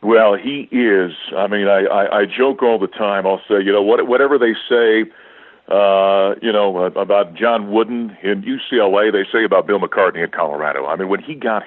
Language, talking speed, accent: English, 205 wpm, American